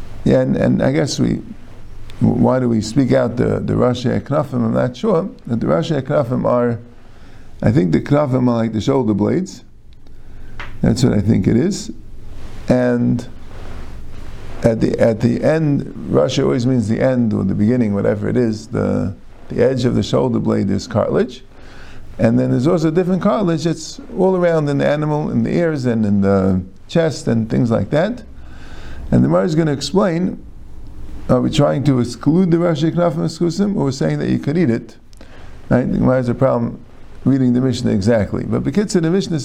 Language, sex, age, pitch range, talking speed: English, male, 50-69, 115-160 Hz, 195 wpm